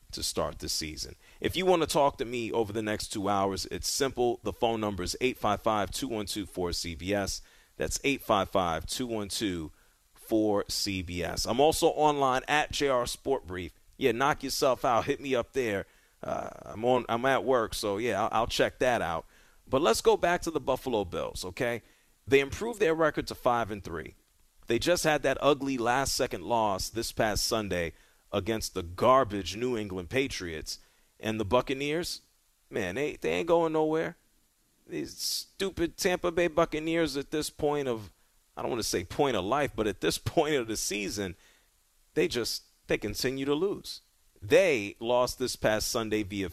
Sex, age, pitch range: male, 40-59, 100-140 Hz